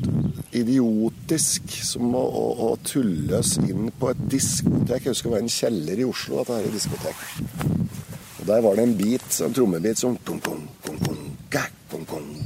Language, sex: English, male